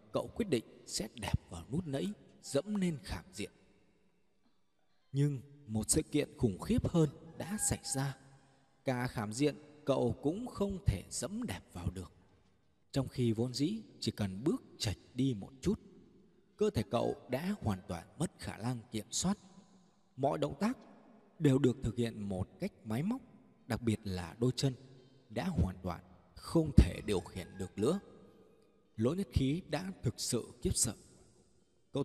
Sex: male